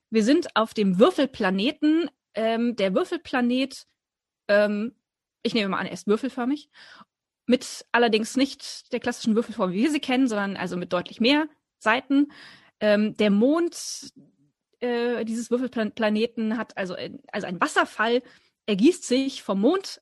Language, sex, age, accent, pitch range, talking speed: German, female, 20-39, German, 215-275 Hz, 140 wpm